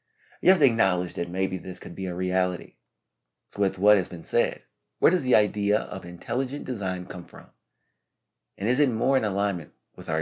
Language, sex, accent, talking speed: English, male, American, 200 wpm